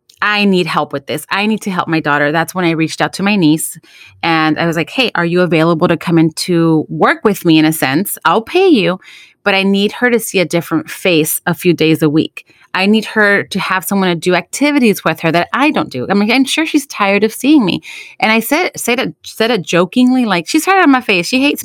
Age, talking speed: 30-49, 260 wpm